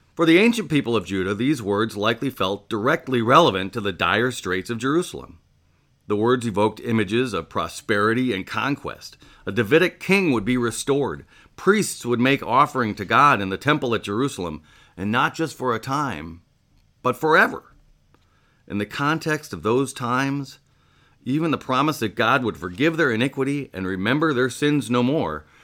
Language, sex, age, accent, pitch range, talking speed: English, male, 40-59, American, 100-140 Hz, 170 wpm